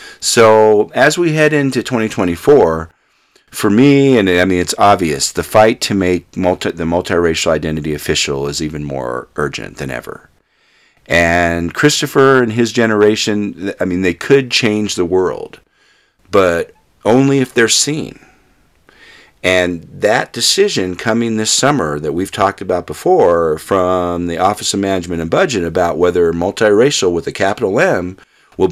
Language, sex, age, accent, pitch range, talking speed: English, male, 50-69, American, 85-120 Hz, 150 wpm